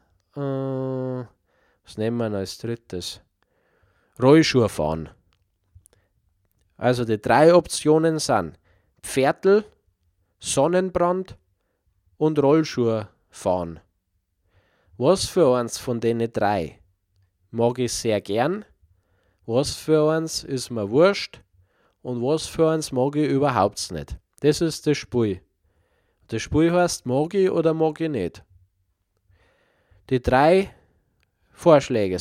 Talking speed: 105 wpm